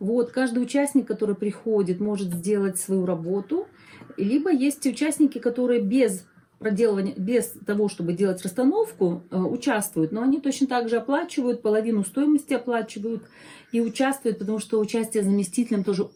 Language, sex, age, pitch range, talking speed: Russian, female, 40-59, 195-260 Hz, 135 wpm